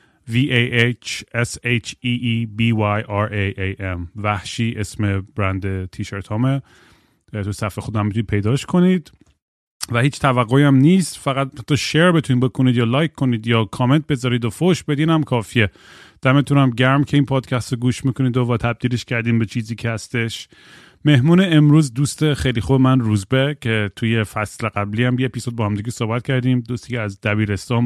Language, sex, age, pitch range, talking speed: Persian, male, 30-49, 105-125 Hz, 150 wpm